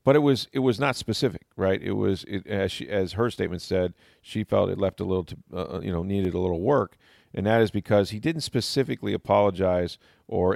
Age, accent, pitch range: 40-59, American, 90-110 Hz